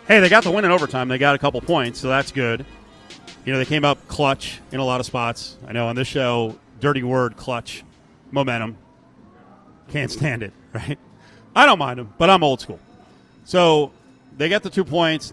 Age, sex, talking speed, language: 40-59, male, 210 wpm, English